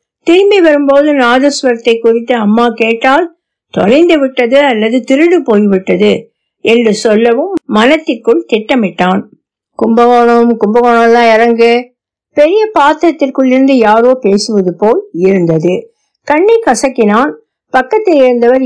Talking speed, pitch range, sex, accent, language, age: 85 wpm, 205-280 Hz, female, native, Tamil, 60-79